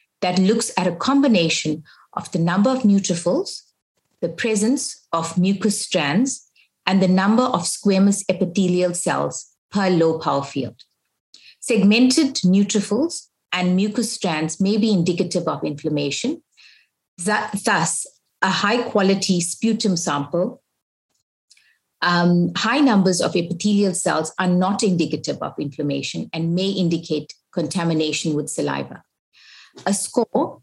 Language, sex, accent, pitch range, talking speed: English, female, Indian, 165-210 Hz, 120 wpm